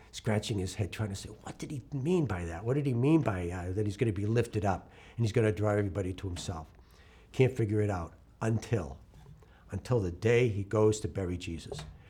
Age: 60-79